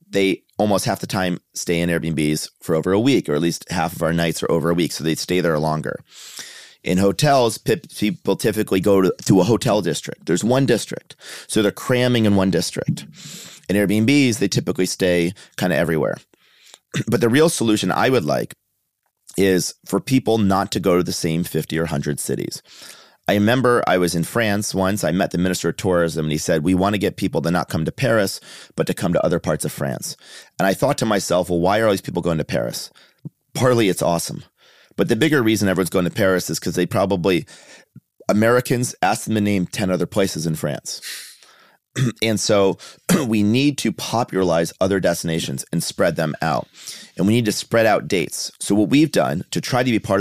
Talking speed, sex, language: 210 wpm, male, Italian